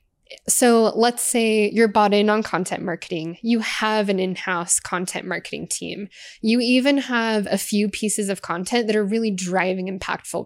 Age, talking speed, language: 10-29, 165 wpm, English